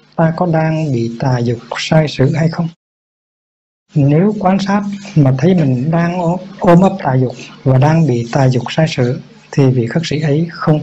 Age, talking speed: 60-79, 190 wpm